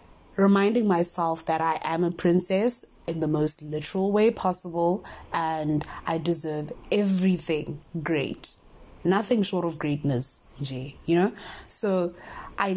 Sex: female